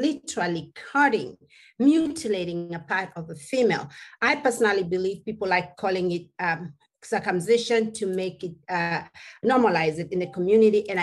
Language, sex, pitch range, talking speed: English, female, 175-220 Hz, 145 wpm